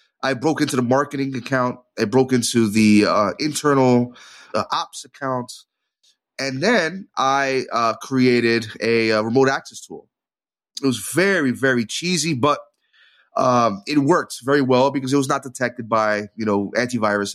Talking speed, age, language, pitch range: 155 wpm, 30-49, English, 115-150 Hz